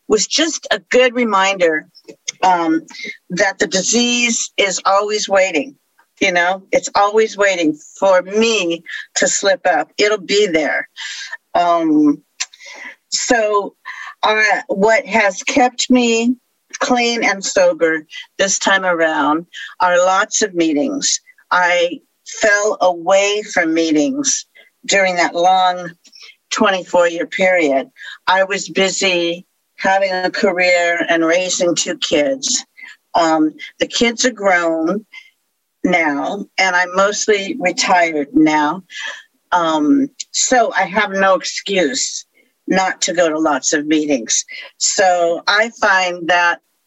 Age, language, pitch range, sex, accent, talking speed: 50-69, English, 175-255 Hz, female, American, 115 wpm